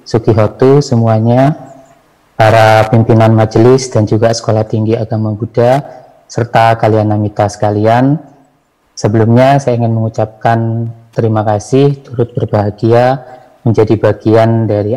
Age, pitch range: 20-39, 105-120 Hz